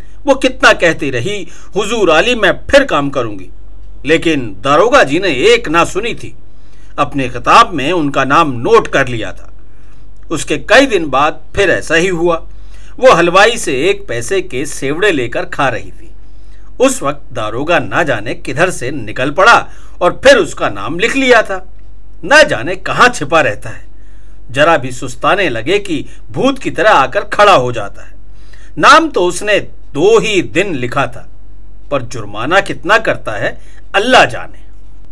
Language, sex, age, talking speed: Hindi, male, 50-69, 125 wpm